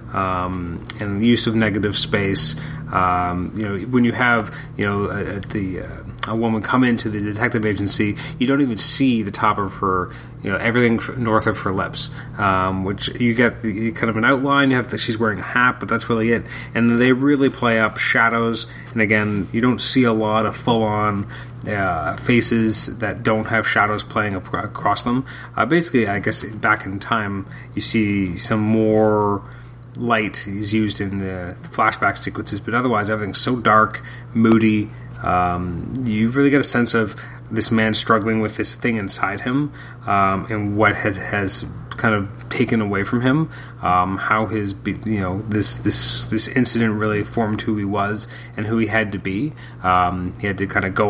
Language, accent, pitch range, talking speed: English, American, 100-120 Hz, 195 wpm